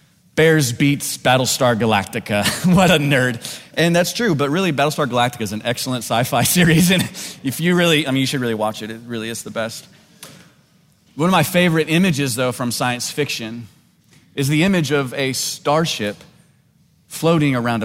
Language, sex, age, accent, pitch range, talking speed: English, male, 30-49, American, 125-160 Hz, 175 wpm